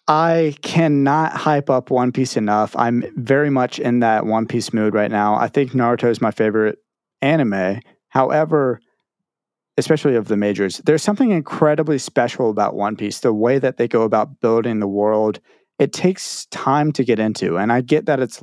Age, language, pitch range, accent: 30-49, English, 110-155 Hz, American